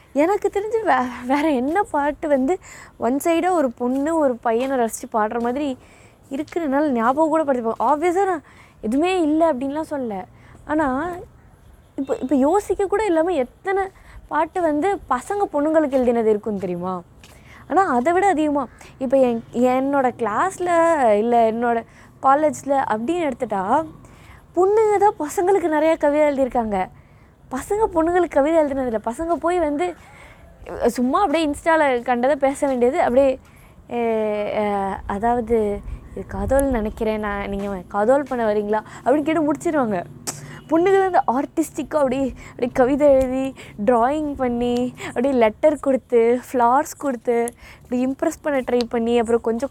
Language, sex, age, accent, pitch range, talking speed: Tamil, female, 20-39, native, 240-320 Hz, 130 wpm